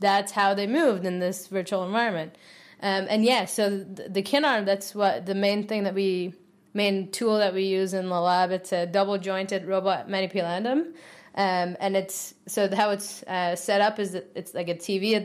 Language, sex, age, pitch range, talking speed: English, female, 20-39, 180-200 Hz, 210 wpm